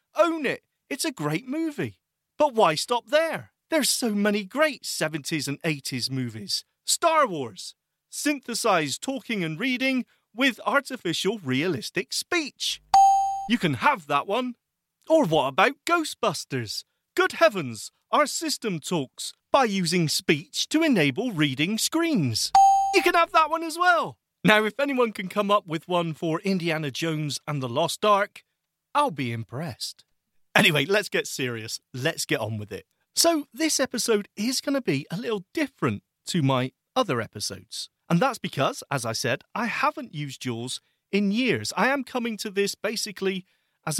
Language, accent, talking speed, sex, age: English, British, 160 wpm, male, 40-59